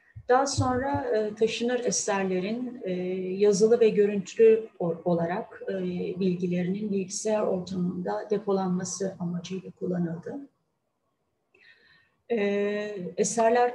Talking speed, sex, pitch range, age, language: 65 wpm, female, 175-225 Hz, 30-49, Turkish